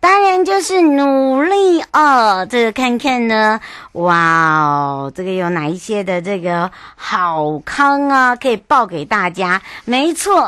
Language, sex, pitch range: Chinese, male, 175-230 Hz